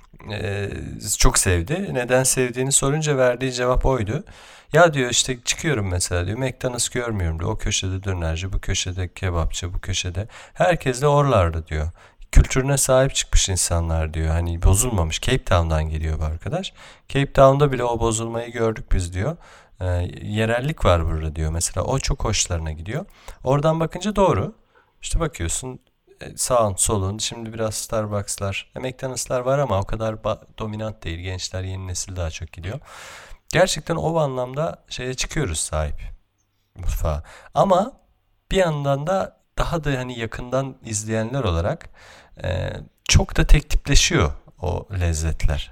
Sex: male